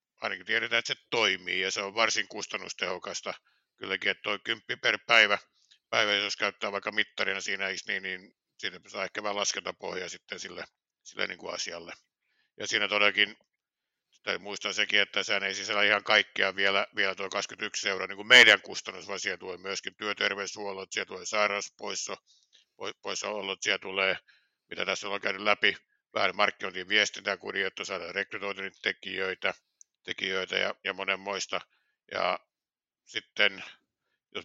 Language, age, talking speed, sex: Finnish, 60-79, 140 wpm, male